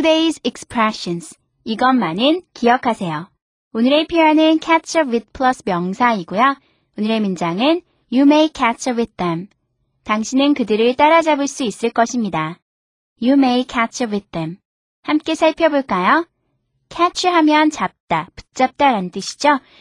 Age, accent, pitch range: 20-39, native, 210-305 Hz